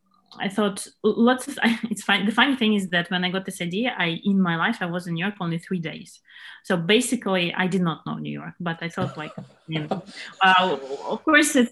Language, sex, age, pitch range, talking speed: English, female, 30-49, 170-210 Hz, 230 wpm